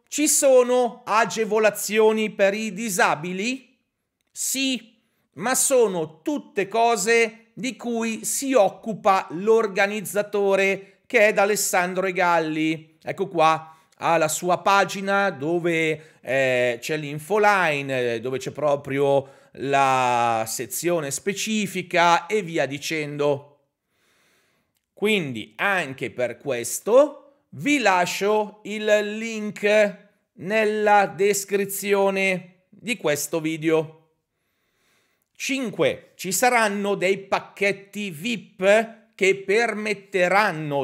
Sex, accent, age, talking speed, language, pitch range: male, native, 40-59, 90 wpm, Italian, 160-215 Hz